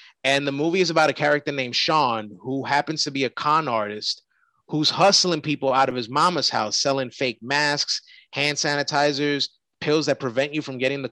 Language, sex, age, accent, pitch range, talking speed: English, male, 30-49, American, 135-165 Hz, 195 wpm